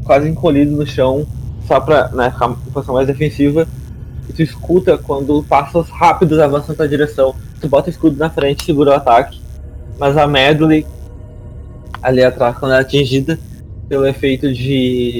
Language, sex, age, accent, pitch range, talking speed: Portuguese, male, 20-39, Brazilian, 120-150 Hz, 165 wpm